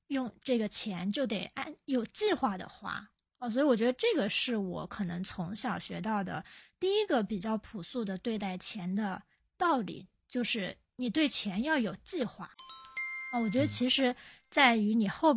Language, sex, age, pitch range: Chinese, female, 20-39, 205-270 Hz